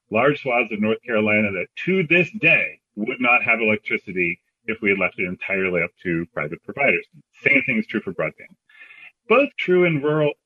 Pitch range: 105-150 Hz